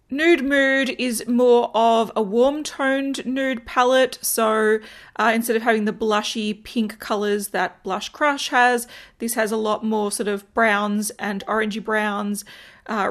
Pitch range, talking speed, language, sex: 215-260 Hz, 160 wpm, English, female